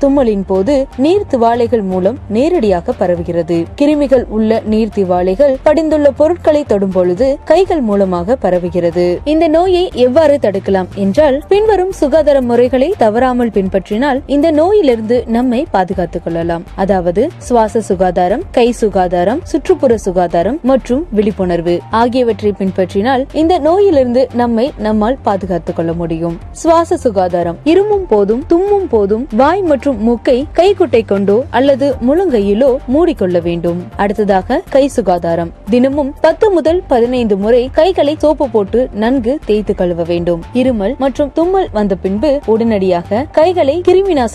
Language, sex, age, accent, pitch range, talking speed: Tamil, female, 20-39, native, 195-290 Hz, 120 wpm